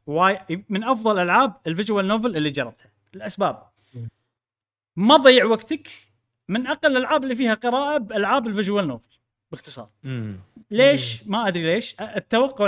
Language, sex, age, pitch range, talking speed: Arabic, male, 30-49, 140-225 Hz, 130 wpm